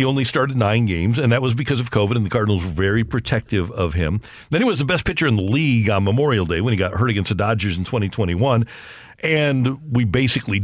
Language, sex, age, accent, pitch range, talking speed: English, male, 50-69, American, 105-135 Hz, 245 wpm